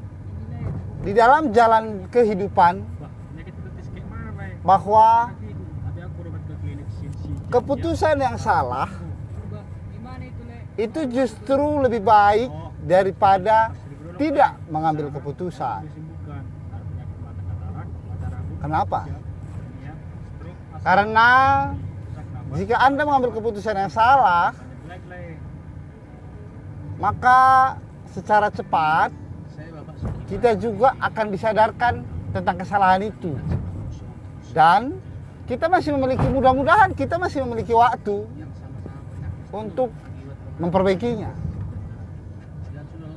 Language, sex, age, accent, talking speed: Indonesian, male, 30-49, native, 65 wpm